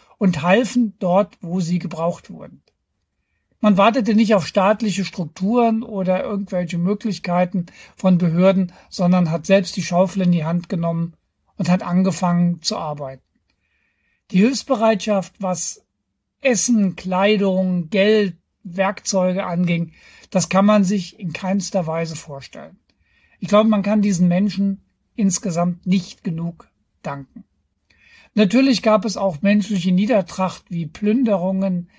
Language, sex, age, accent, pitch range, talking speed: German, male, 60-79, German, 170-200 Hz, 125 wpm